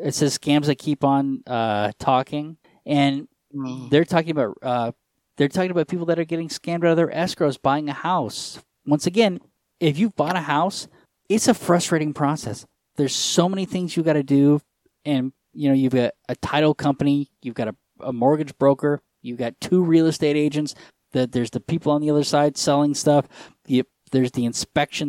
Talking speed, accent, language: 195 wpm, American, English